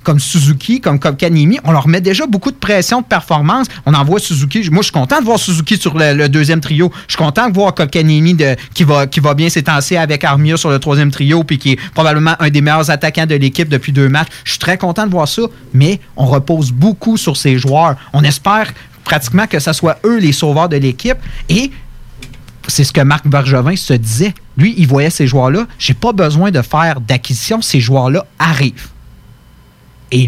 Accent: Canadian